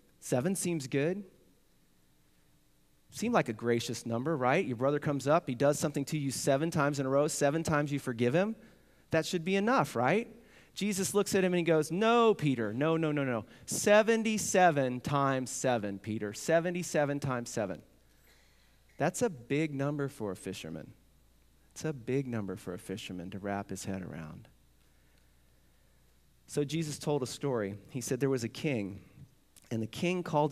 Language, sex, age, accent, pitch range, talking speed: English, male, 40-59, American, 110-155 Hz, 170 wpm